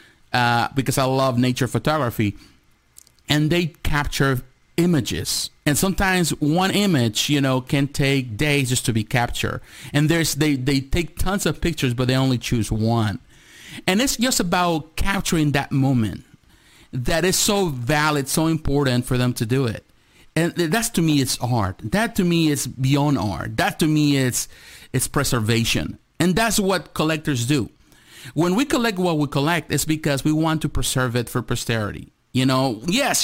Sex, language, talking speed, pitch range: male, English, 170 wpm, 125-165 Hz